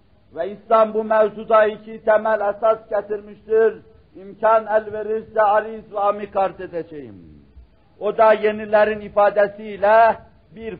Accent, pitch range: native, 185-220 Hz